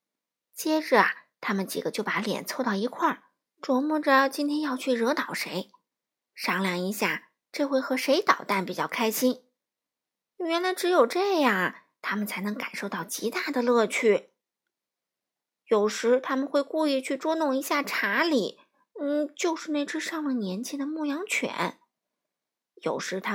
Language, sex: Chinese, female